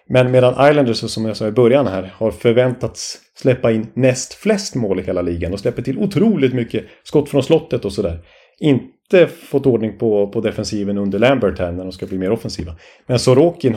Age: 30-49